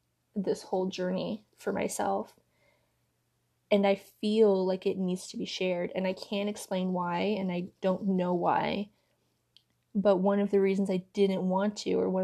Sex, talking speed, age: female, 170 wpm, 20-39